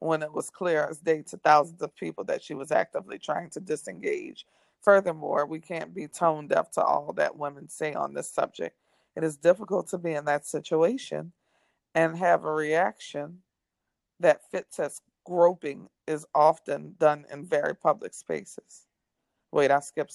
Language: English